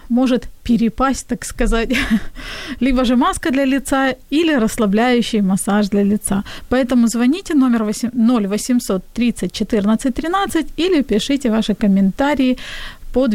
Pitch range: 215-265 Hz